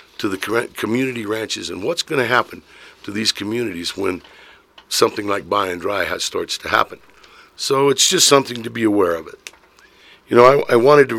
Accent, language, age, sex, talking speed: American, English, 60-79, male, 180 wpm